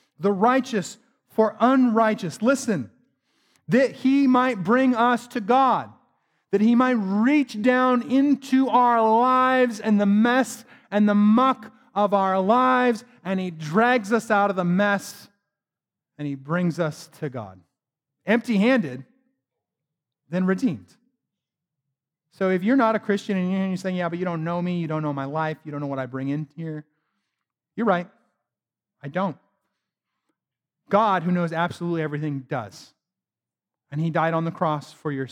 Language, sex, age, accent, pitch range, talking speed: English, male, 30-49, American, 140-215 Hz, 155 wpm